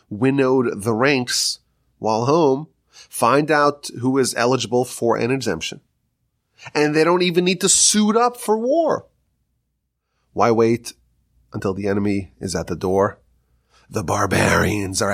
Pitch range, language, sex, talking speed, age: 100-150 Hz, English, male, 140 wpm, 30-49